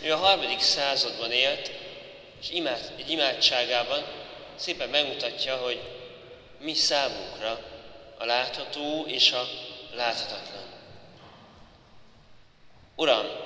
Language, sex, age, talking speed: Hungarian, male, 30-49, 85 wpm